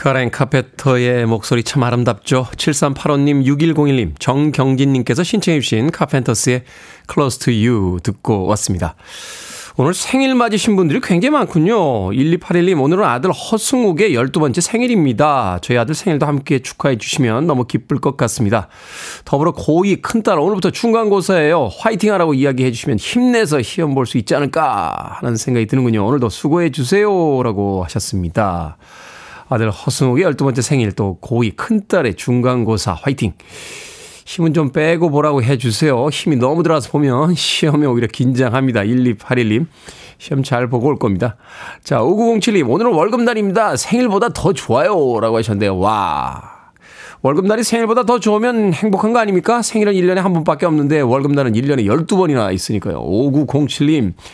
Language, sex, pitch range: Korean, male, 120-175 Hz